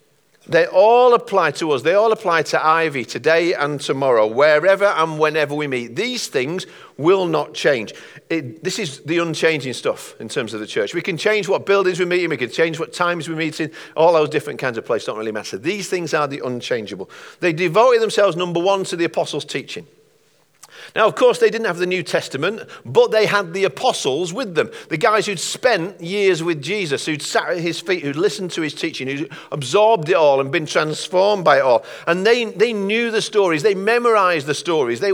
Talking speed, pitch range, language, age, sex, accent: 215 wpm, 155-200 Hz, English, 50-69, male, British